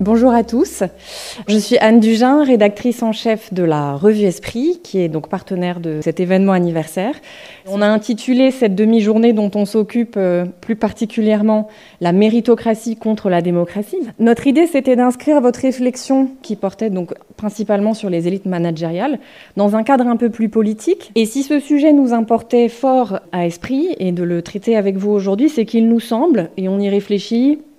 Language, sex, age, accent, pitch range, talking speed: French, female, 20-39, French, 190-245 Hz, 180 wpm